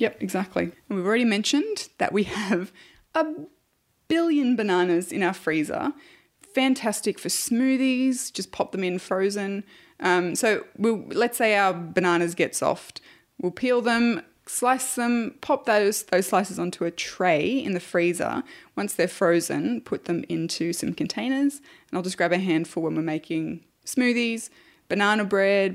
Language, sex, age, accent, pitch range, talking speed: English, female, 20-39, Australian, 170-240 Hz, 155 wpm